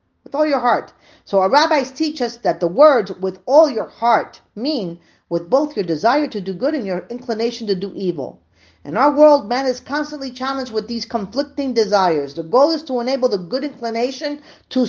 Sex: female